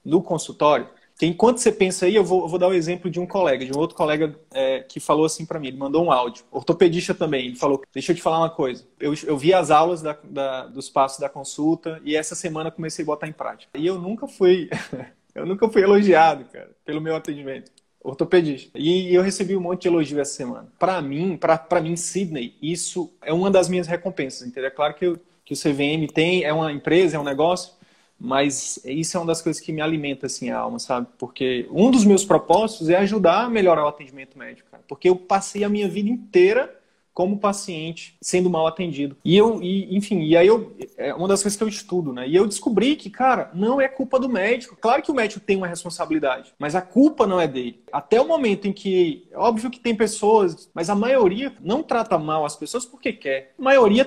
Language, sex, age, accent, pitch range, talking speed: Portuguese, male, 20-39, Brazilian, 155-220 Hz, 230 wpm